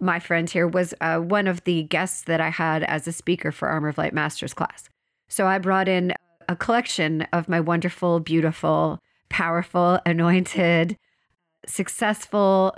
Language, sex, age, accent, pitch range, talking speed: English, female, 40-59, American, 170-215 Hz, 160 wpm